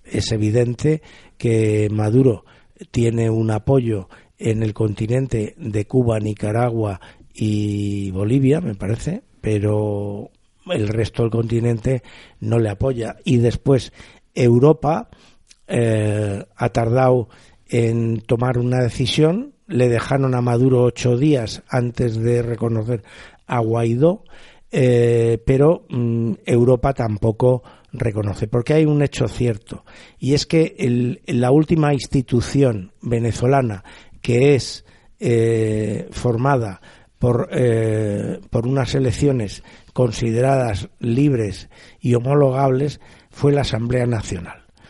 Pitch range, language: 110-130 Hz, Spanish